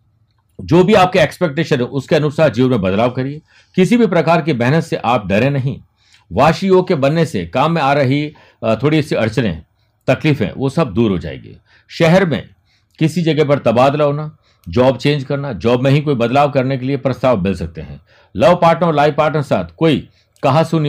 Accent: native